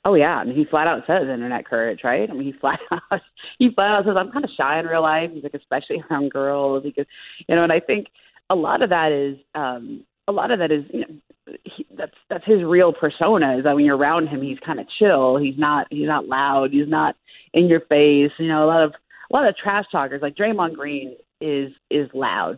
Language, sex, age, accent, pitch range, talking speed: English, female, 30-49, American, 140-185 Hz, 245 wpm